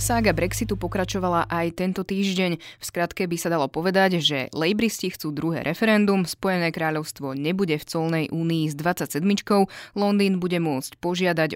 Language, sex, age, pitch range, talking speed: Slovak, female, 20-39, 155-180 Hz, 150 wpm